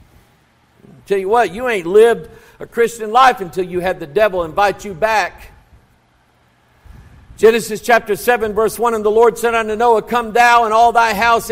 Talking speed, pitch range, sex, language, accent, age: 175 wpm, 180-245 Hz, male, English, American, 50-69